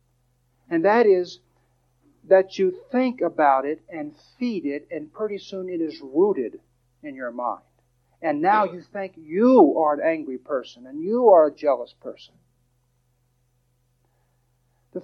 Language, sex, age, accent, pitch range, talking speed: English, male, 50-69, American, 125-180 Hz, 145 wpm